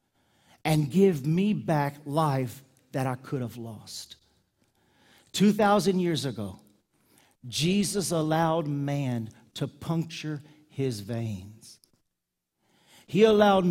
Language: English